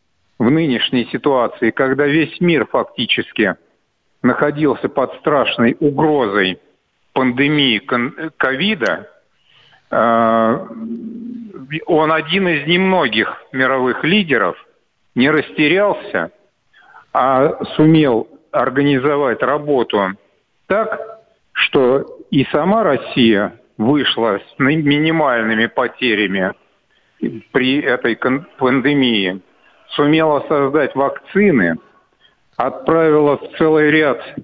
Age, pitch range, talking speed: 50-69, 125-160 Hz, 75 wpm